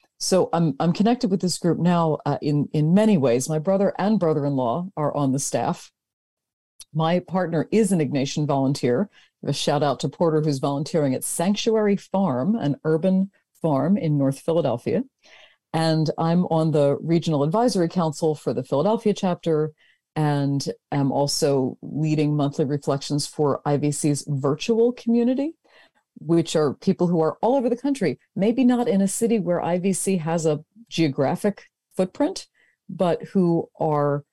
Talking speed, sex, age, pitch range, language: 150 wpm, female, 40-59, 145-195 Hz, English